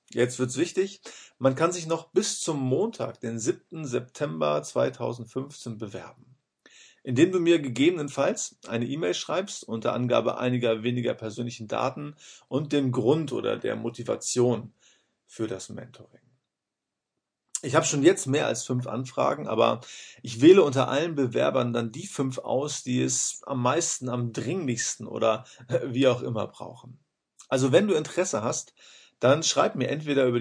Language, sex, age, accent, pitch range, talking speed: German, male, 40-59, German, 115-140 Hz, 150 wpm